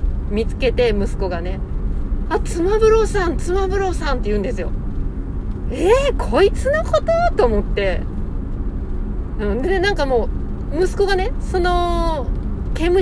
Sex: female